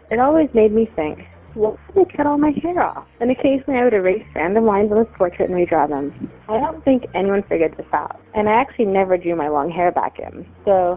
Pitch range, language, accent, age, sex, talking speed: 175-250 Hz, English, American, 20-39, female, 240 wpm